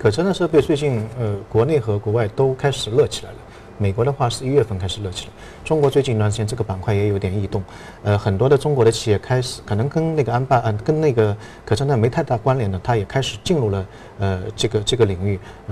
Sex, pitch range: male, 105-125 Hz